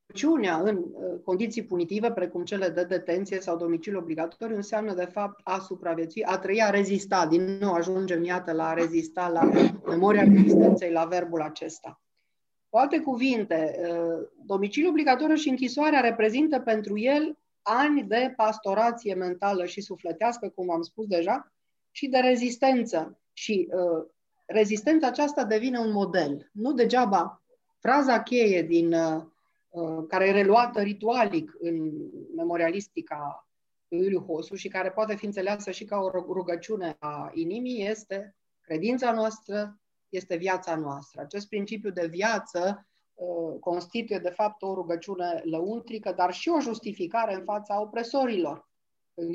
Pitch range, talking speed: 170-225 Hz, 135 wpm